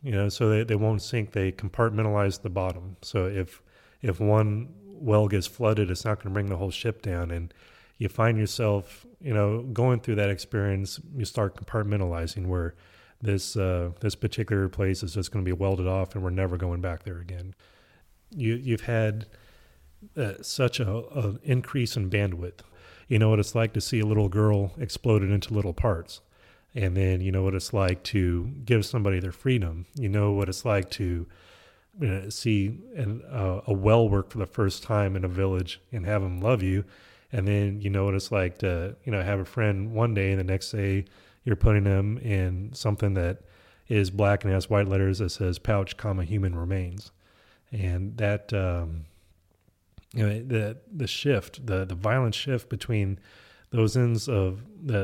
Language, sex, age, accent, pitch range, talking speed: English, male, 30-49, American, 95-110 Hz, 190 wpm